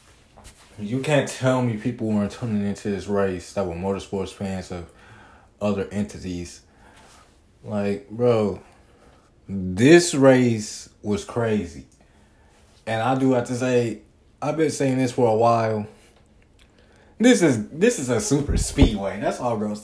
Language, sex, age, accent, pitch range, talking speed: English, male, 20-39, American, 95-115 Hz, 140 wpm